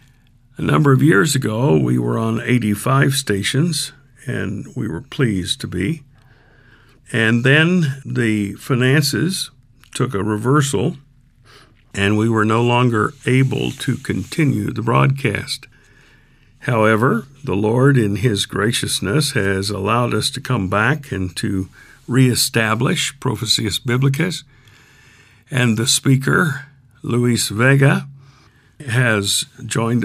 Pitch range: 110-135 Hz